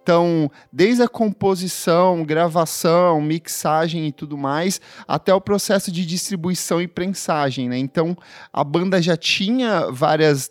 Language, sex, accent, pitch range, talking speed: Portuguese, male, Brazilian, 155-195 Hz, 130 wpm